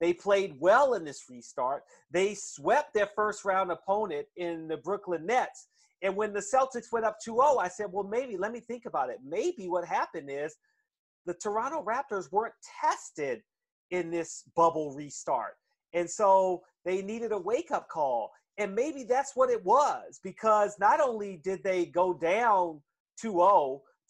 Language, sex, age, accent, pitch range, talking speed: English, male, 40-59, American, 180-230 Hz, 160 wpm